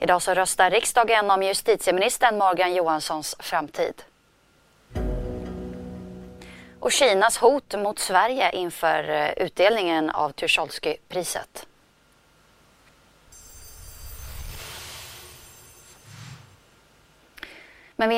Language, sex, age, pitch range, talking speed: Swedish, female, 20-39, 160-195 Hz, 60 wpm